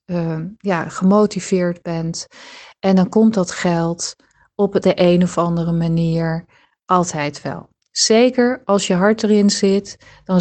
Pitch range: 175-215 Hz